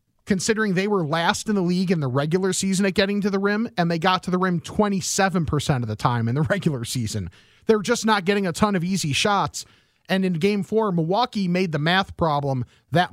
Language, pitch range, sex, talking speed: English, 145-195 Hz, male, 230 wpm